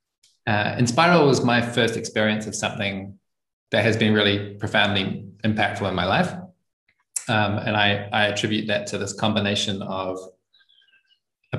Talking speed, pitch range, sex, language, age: 145 wpm, 100-115 Hz, male, English, 20-39